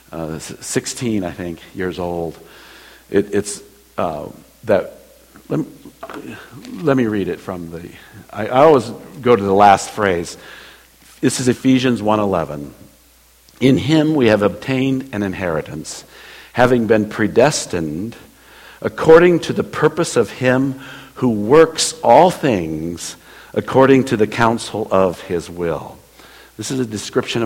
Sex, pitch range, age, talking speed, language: male, 85-130 Hz, 60-79, 130 wpm, English